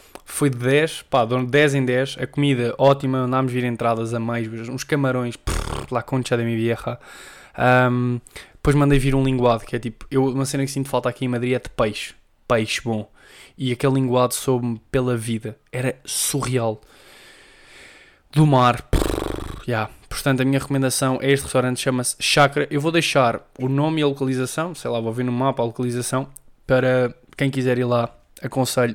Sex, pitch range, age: male, 125-145 Hz, 10-29